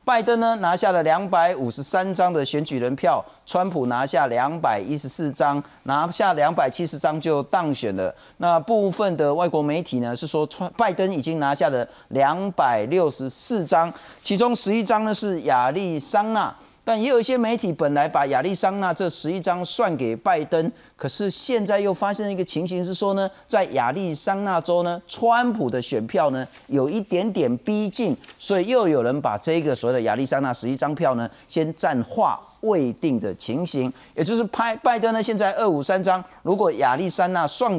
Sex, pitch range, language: male, 140-195 Hz, Chinese